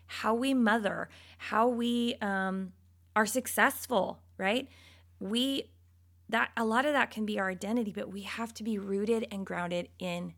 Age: 20-39